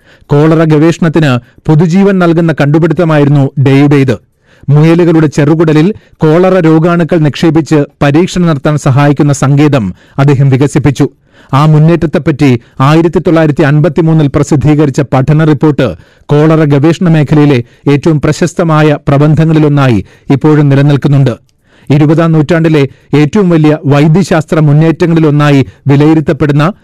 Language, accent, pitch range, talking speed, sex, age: Malayalam, native, 140-165 Hz, 90 wpm, male, 40-59